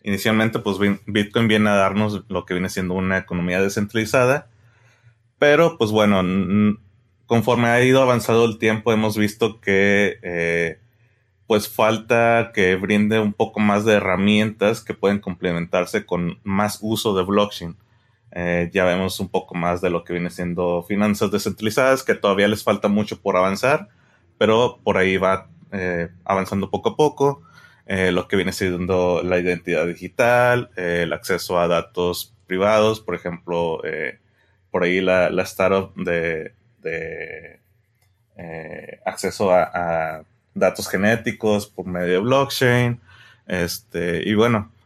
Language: Spanish